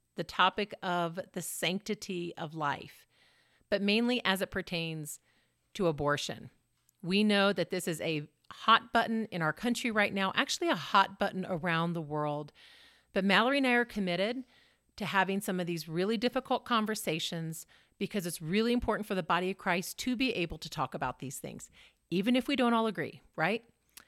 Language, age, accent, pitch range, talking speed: English, 40-59, American, 170-230 Hz, 180 wpm